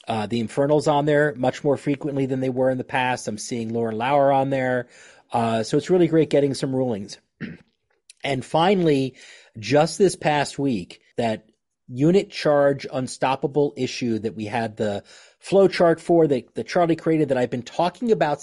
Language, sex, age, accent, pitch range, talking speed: English, male, 40-59, American, 120-155 Hz, 180 wpm